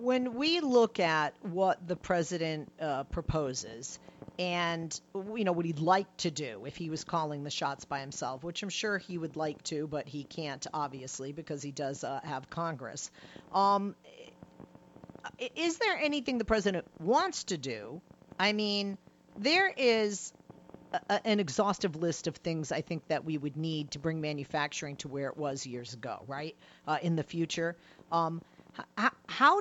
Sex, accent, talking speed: female, American, 170 wpm